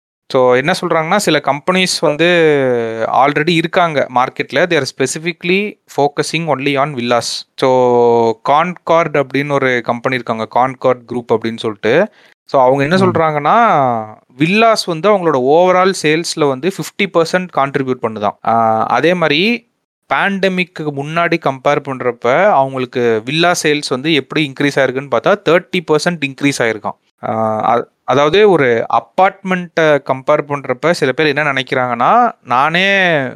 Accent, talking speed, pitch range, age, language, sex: native, 120 wpm, 125-160 Hz, 30-49, Tamil, male